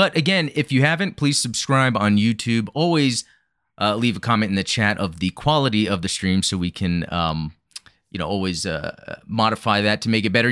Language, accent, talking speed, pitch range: English, American, 210 wpm, 100-135 Hz